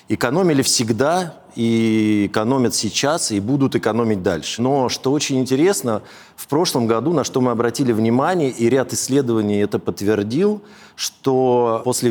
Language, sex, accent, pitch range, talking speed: Russian, male, native, 110-140 Hz, 140 wpm